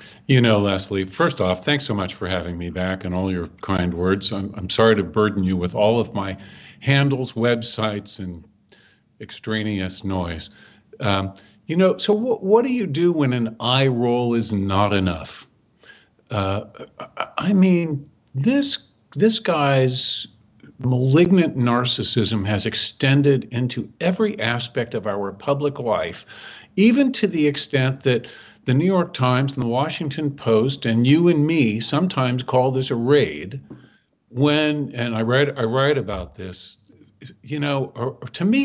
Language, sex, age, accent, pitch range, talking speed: English, male, 50-69, American, 105-140 Hz, 155 wpm